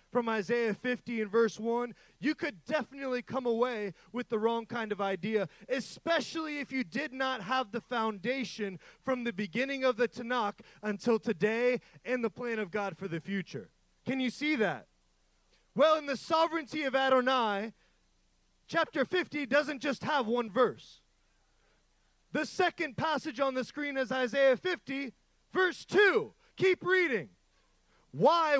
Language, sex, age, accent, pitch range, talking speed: English, male, 20-39, American, 240-305 Hz, 150 wpm